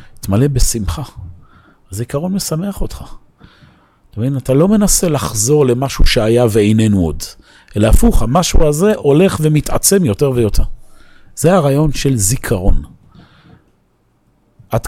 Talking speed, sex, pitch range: 115 wpm, male, 100-135 Hz